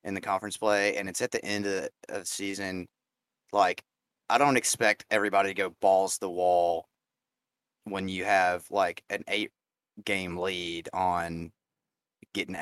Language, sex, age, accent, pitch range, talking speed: English, male, 30-49, American, 100-130 Hz, 150 wpm